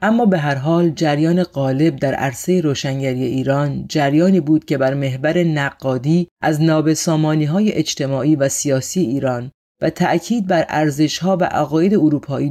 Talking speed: 145 wpm